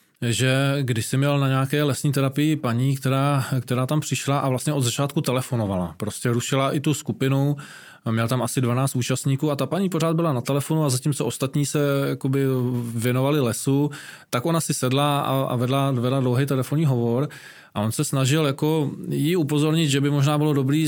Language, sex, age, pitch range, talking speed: Czech, male, 20-39, 125-145 Hz, 180 wpm